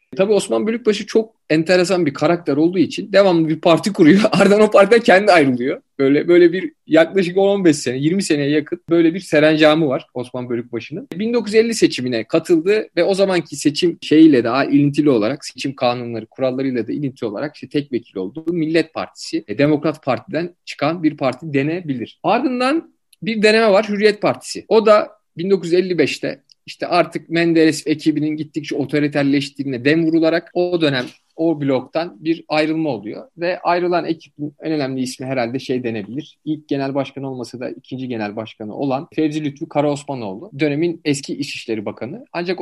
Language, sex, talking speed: Turkish, male, 160 wpm